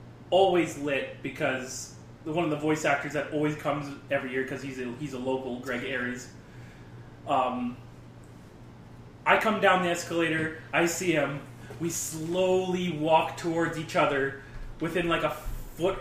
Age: 20-39